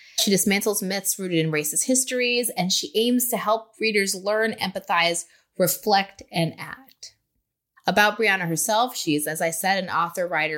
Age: 20-39